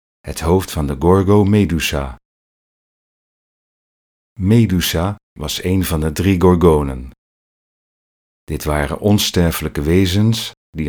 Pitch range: 75-100 Hz